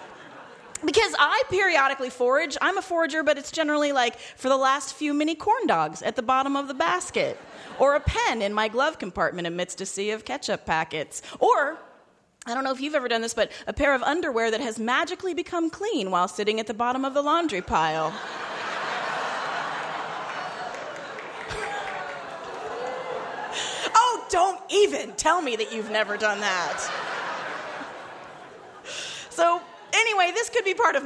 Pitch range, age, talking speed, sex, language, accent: 210-315 Hz, 30-49, 160 wpm, female, English, American